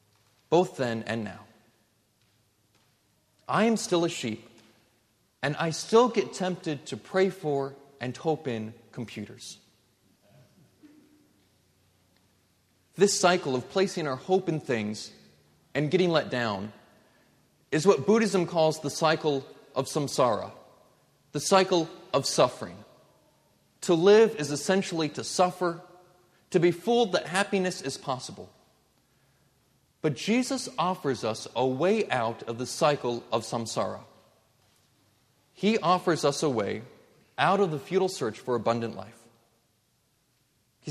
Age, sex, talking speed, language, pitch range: 30-49, male, 125 wpm, English, 115-180 Hz